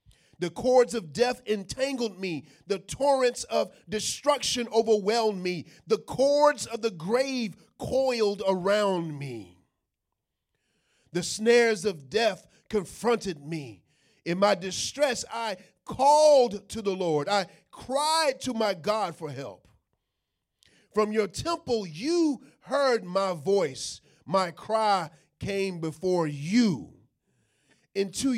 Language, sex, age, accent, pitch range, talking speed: English, male, 40-59, American, 160-230 Hz, 115 wpm